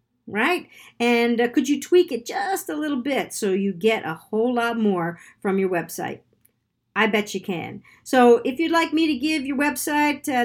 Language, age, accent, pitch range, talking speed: English, 50-69, American, 220-280 Hz, 200 wpm